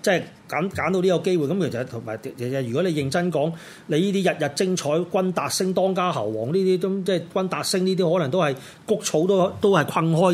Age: 30-49